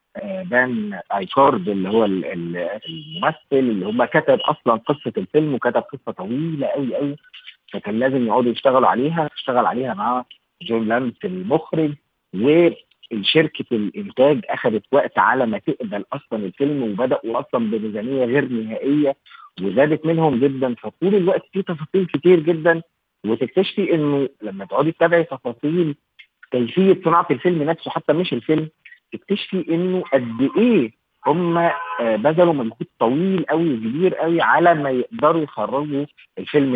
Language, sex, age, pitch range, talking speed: Arabic, male, 40-59, 125-170 Hz, 135 wpm